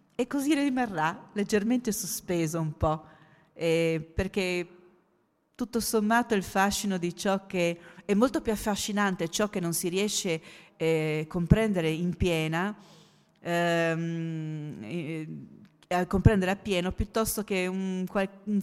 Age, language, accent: 40-59, Italian, native